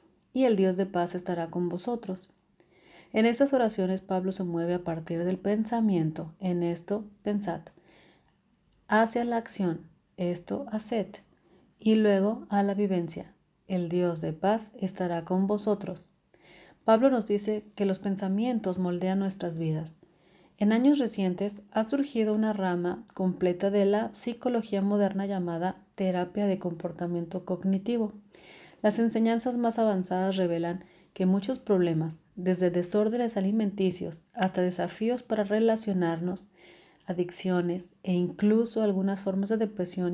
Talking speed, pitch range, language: 130 wpm, 180-215 Hz, Spanish